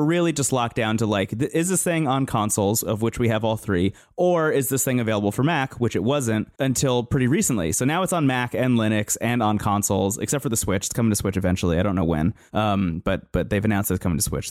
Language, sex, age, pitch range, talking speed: English, male, 20-39, 110-150 Hz, 255 wpm